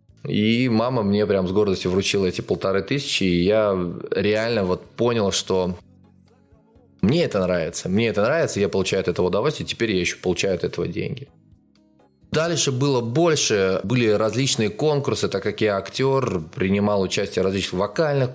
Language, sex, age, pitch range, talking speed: Russian, male, 20-39, 95-130 Hz, 155 wpm